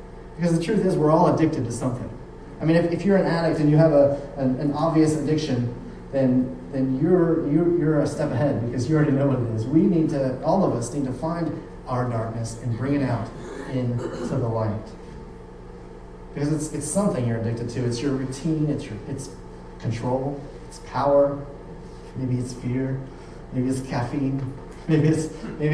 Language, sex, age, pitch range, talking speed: English, male, 30-49, 130-165 Hz, 190 wpm